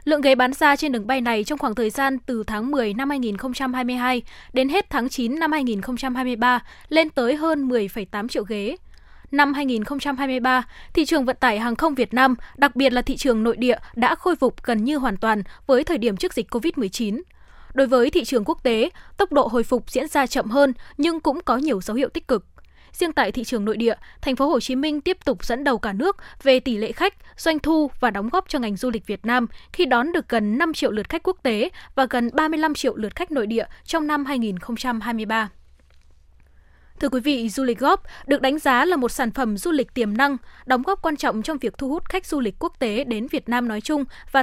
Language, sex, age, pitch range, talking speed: Vietnamese, female, 10-29, 235-290 Hz, 230 wpm